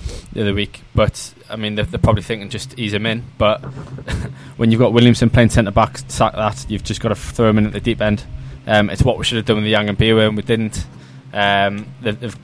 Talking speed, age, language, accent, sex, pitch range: 250 wpm, 20-39, English, British, male, 105-120 Hz